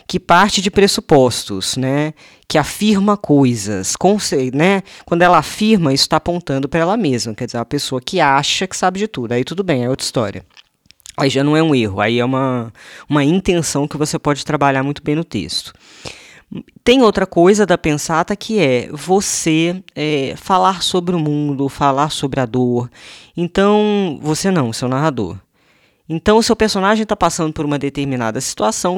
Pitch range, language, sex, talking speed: 130-175 Hz, Portuguese, female, 180 wpm